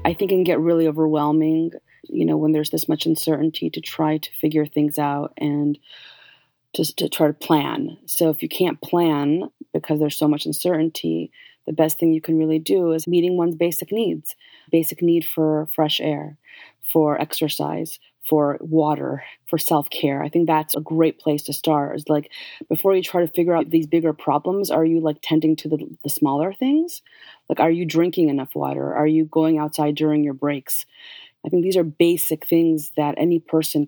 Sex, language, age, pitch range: female, English, 30-49, 150-165 Hz